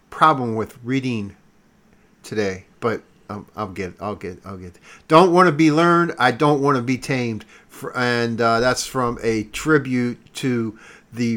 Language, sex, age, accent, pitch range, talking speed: English, male, 50-69, American, 105-130 Hz, 165 wpm